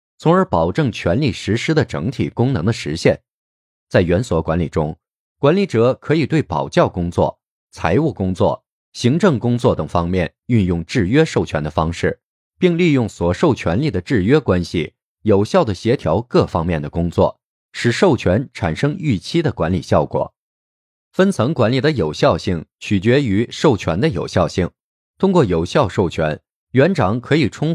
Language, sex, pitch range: Chinese, male, 85-145 Hz